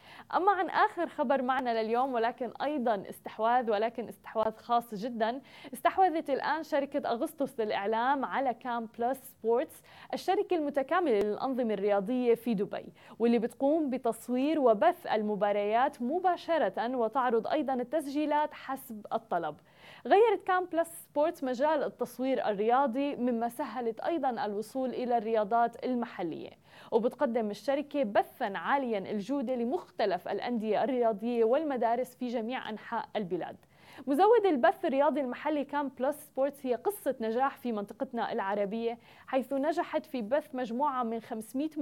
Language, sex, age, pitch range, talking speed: Arabic, female, 20-39, 230-285 Hz, 120 wpm